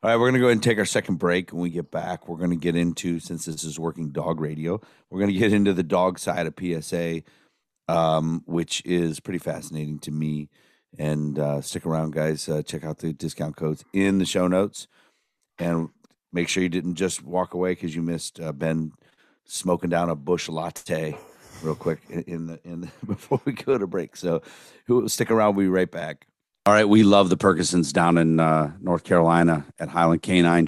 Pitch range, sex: 85-100 Hz, male